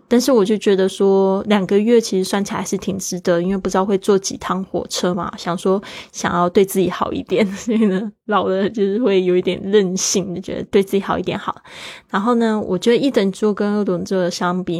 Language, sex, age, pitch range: Chinese, female, 20-39, 180-210 Hz